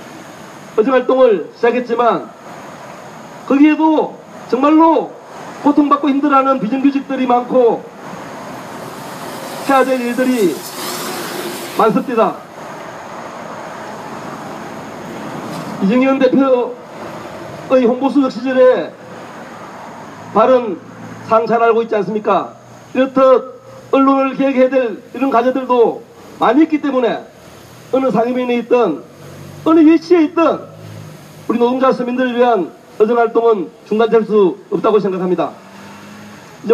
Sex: male